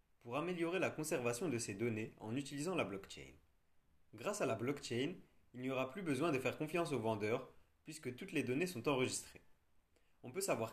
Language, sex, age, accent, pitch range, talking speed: French, male, 30-49, French, 110-155 Hz, 190 wpm